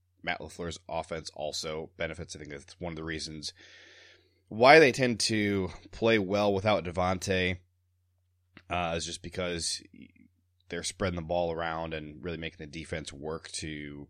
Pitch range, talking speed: 80-95 Hz, 155 wpm